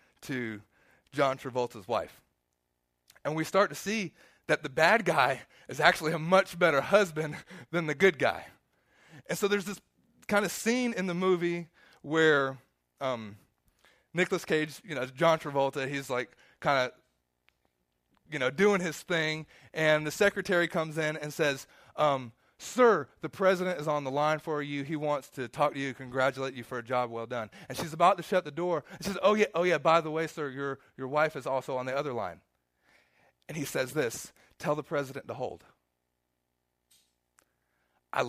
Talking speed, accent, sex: 180 wpm, American, male